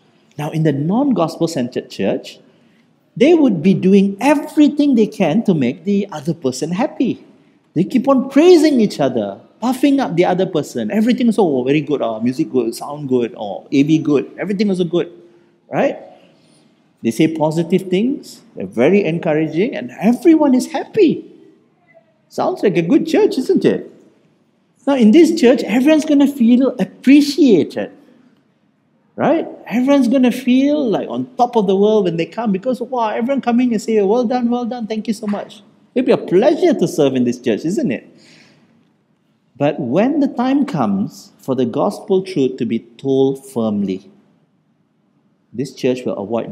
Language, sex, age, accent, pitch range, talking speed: English, male, 50-69, Malaysian, 155-260 Hz, 170 wpm